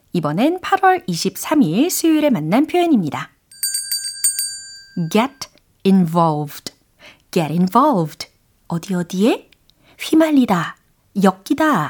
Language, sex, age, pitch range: Korean, female, 40-59, 170-275 Hz